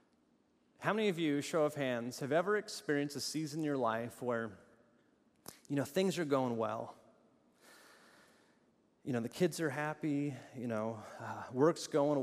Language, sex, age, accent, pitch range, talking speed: English, male, 30-49, American, 130-210 Hz, 160 wpm